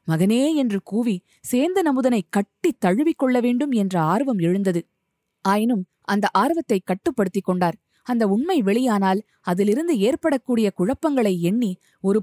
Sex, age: female, 20-39